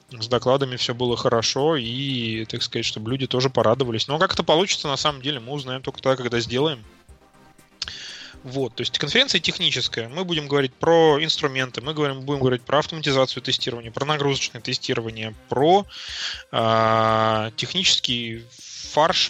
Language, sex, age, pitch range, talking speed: Russian, male, 20-39, 115-145 Hz, 150 wpm